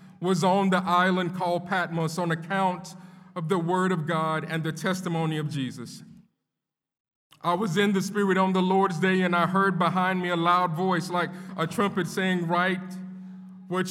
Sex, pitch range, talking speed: male, 165-195 Hz, 175 wpm